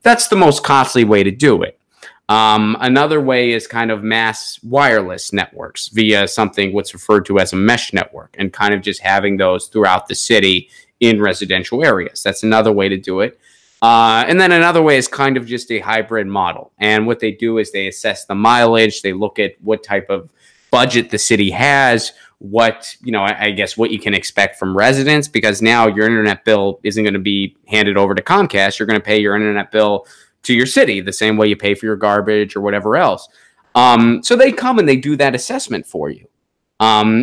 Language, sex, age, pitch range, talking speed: English, male, 20-39, 105-120 Hz, 215 wpm